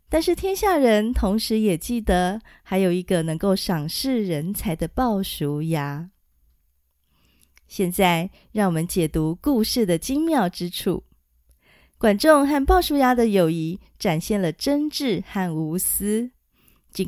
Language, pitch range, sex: Chinese, 170-235 Hz, female